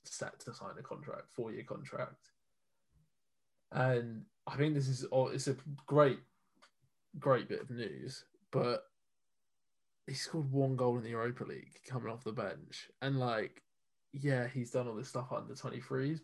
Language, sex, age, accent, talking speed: English, male, 20-39, British, 165 wpm